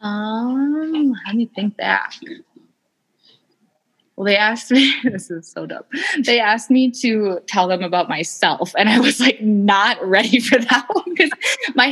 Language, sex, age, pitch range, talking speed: English, female, 20-39, 175-255 Hz, 160 wpm